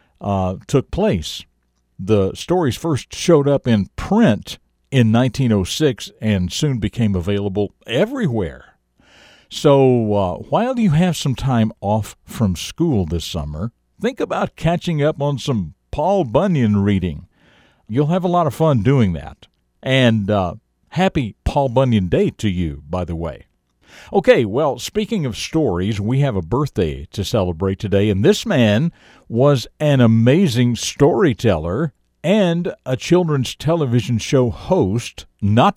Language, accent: English, American